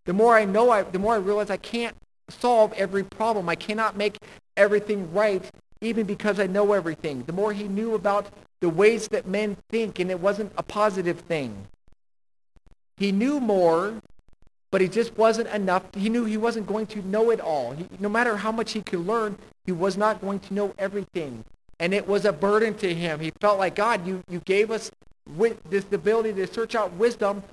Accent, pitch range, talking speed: American, 170-215 Hz, 205 wpm